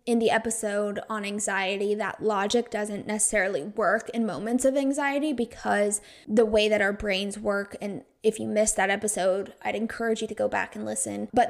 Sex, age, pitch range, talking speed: female, 10-29, 210-250 Hz, 190 wpm